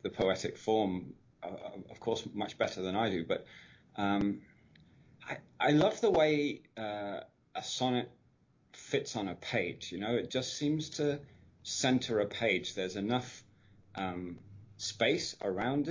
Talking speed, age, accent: 145 wpm, 30-49, British